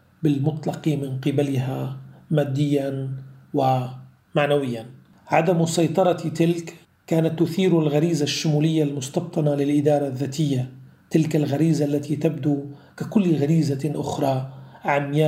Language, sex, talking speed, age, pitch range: Arabic, male, 90 wpm, 40-59, 135-155 Hz